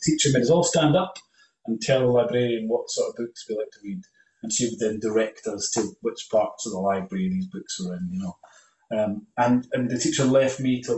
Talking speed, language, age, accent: 245 wpm, English, 30-49, British